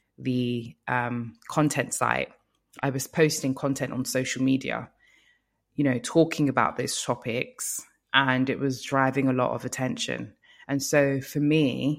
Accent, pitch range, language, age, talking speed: British, 120-145 Hz, English, 20-39, 145 wpm